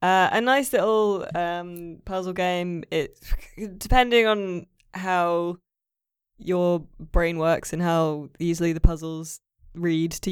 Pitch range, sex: 155-190 Hz, female